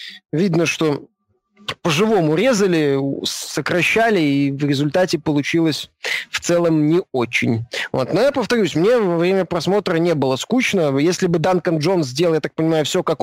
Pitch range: 150-195 Hz